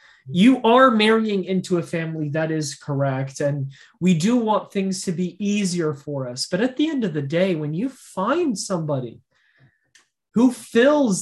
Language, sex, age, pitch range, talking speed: English, male, 20-39, 175-230 Hz, 170 wpm